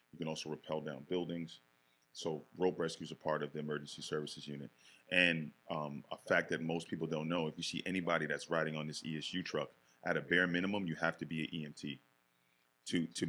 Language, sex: English, male